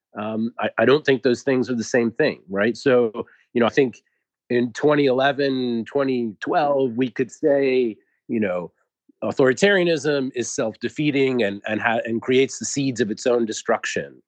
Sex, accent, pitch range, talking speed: male, American, 110-140 Hz, 165 wpm